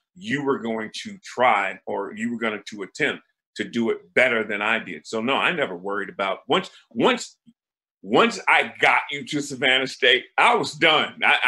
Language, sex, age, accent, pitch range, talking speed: English, male, 40-59, American, 110-135 Hz, 200 wpm